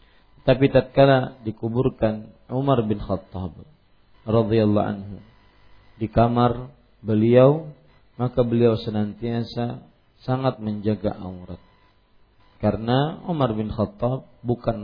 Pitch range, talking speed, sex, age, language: 100-120 Hz, 90 wpm, male, 50-69, Malay